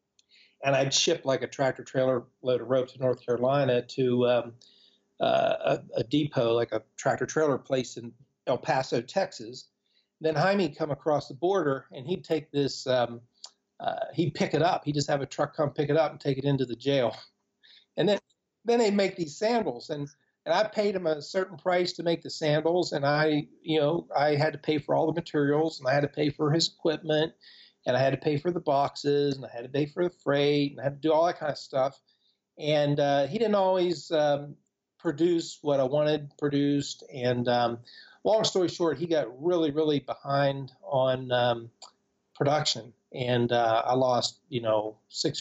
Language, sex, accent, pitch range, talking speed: English, male, American, 125-155 Hz, 205 wpm